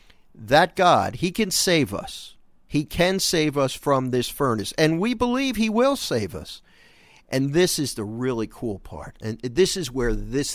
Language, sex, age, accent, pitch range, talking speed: English, male, 50-69, American, 110-160 Hz, 180 wpm